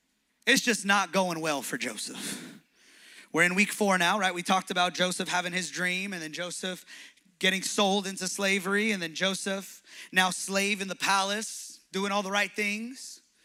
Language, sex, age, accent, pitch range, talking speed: English, male, 20-39, American, 185-245 Hz, 180 wpm